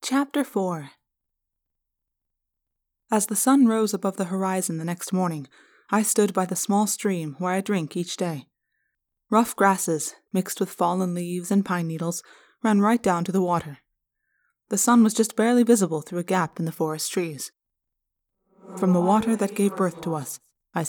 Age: 20-39